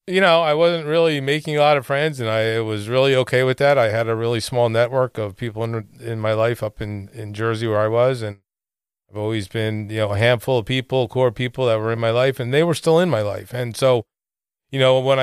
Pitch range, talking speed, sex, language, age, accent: 110-130 Hz, 260 wpm, male, English, 40-59, American